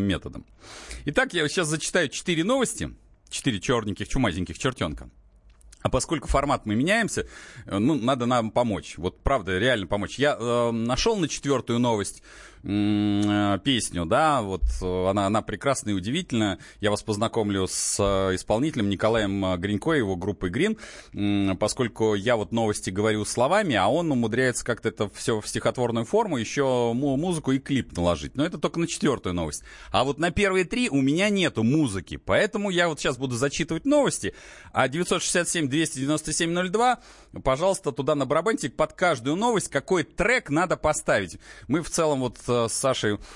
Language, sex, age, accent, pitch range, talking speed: Russian, male, 30-49, native, 100-150 Hz, 150 wpm